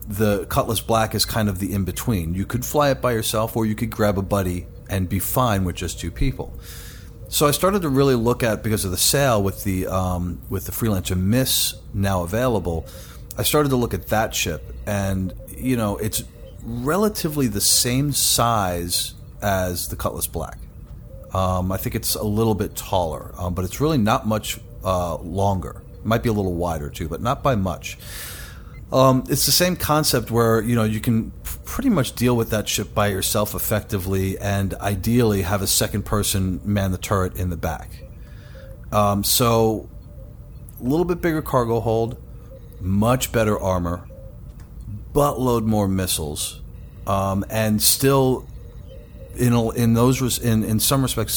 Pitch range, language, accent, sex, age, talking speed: 95-120 Hz, English, American, male, 40-59, 175 wpm